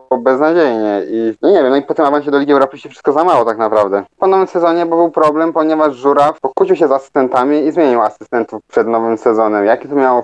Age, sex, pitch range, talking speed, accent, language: 20-39, male, 120-140 Hz, 210 wpm, native, Polish